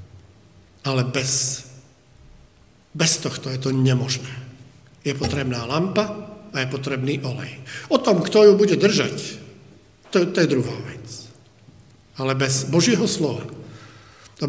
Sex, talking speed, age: male, 125 wpm, 50-69